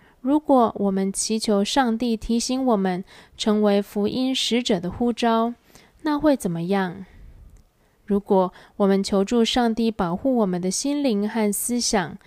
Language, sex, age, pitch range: Chinese, female, 20-39, 185-230 Hz